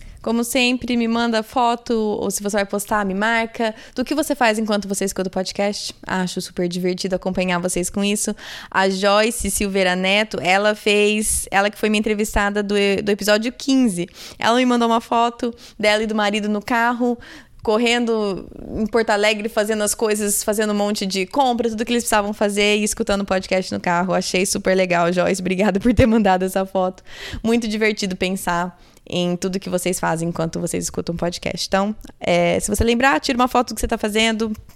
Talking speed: 190 wpm